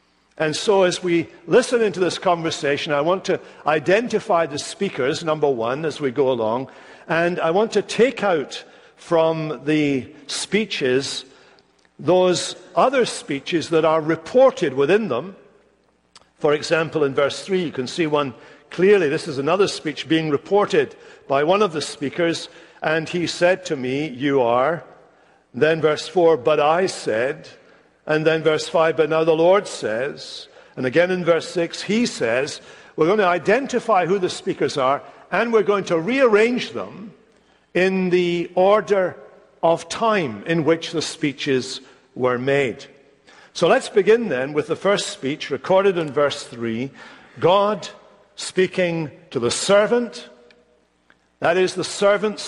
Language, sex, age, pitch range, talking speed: English, male, 60-79, 150-195 Hz, 150 wpm